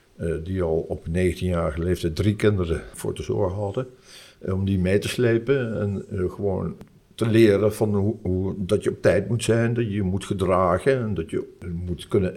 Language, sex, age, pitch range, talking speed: Dutch, male, 60-79, 90-105 Hz, 210 wpm